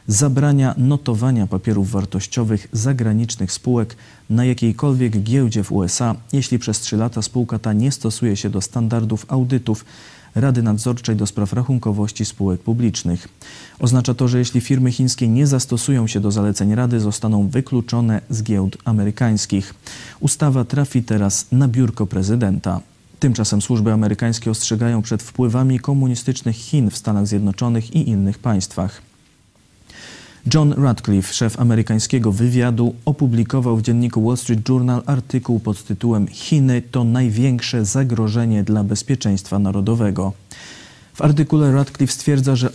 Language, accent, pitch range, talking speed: Polish, native, 105-125 Hz, 130 wpm